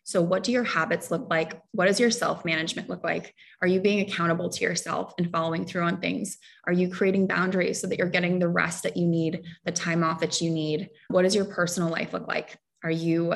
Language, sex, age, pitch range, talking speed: English, female, 20-39, 165-185 Hz, 240 wpm